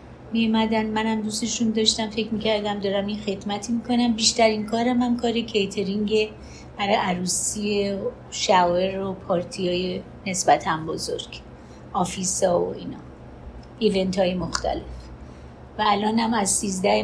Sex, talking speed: female, 135 wpm